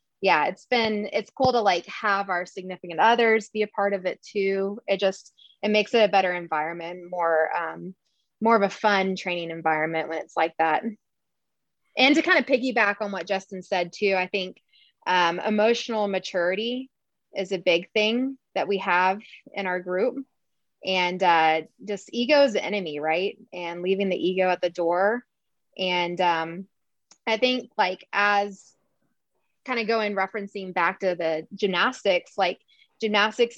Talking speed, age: 165 wpm, 20-39